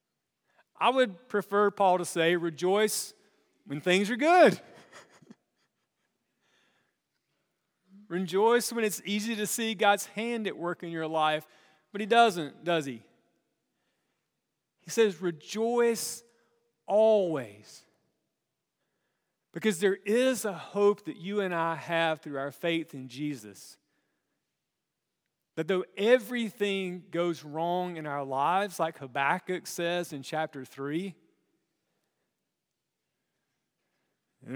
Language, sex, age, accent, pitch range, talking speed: English, male, 40-59, American, 160-215 Hz, 110 wpm